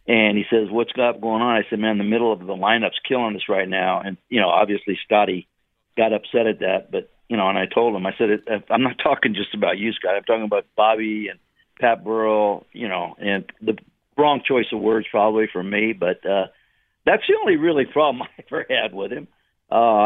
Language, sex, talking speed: English, male, 220 wpm